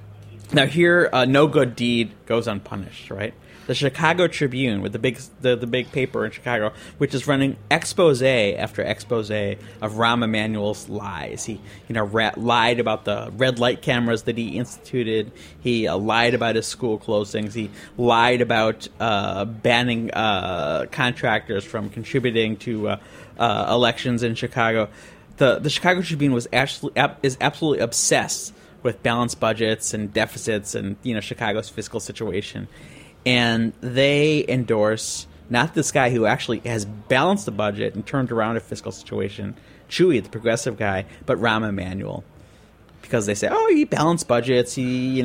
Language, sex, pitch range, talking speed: English, male, 110-130 Hz, 160 wpm